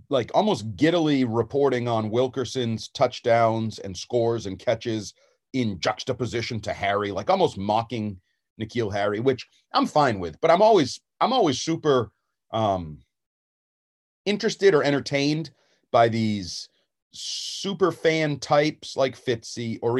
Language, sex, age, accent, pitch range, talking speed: English, male, 40-59, American, 110-145 Hz, 125 wpm